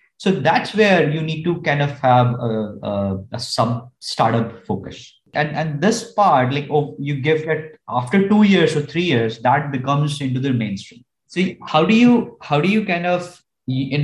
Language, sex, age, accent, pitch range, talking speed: English, male, 20-39, Indian, 120-155 Hz, 190 wpm